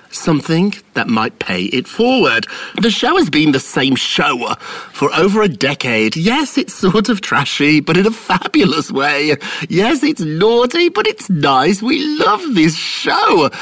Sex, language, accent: male, English, British